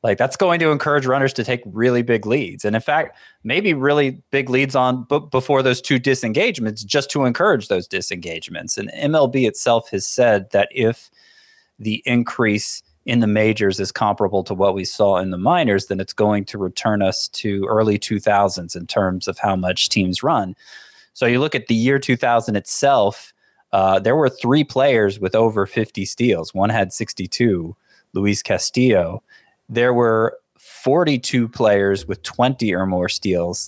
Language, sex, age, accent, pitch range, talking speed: English, male, 20-39, American, 95-120 Hz, 175 wpm